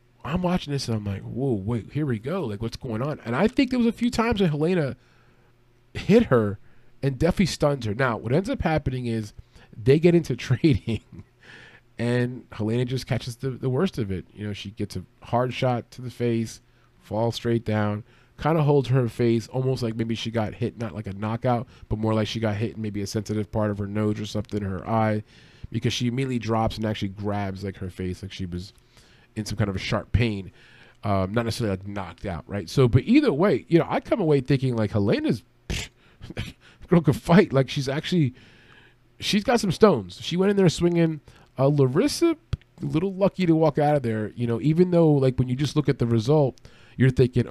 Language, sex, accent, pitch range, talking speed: English, male, American, 110-140 Hz, 220 wpm